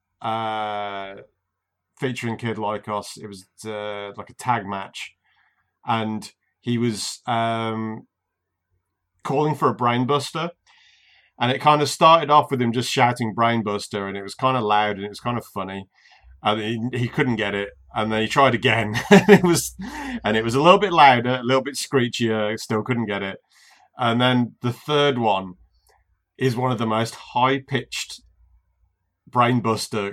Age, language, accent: 30-49, English, British